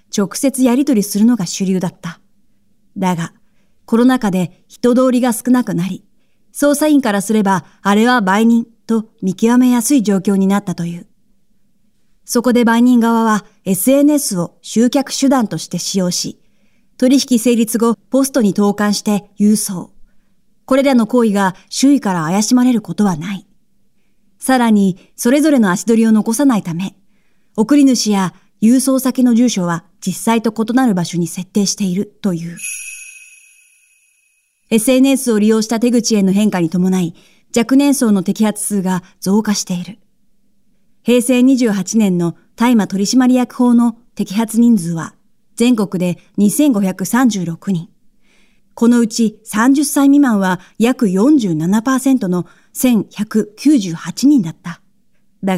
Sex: female